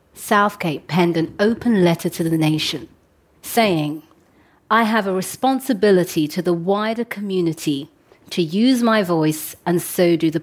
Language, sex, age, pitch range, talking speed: English, female, 40-59, 150-200 Hz, 145 wpm